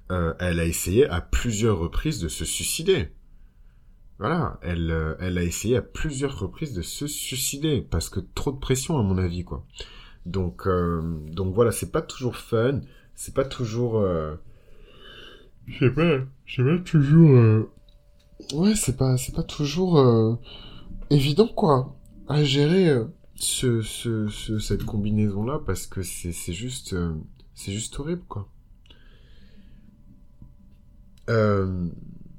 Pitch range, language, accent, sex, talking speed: 90-130 Hz, French, French, male, 145 wpm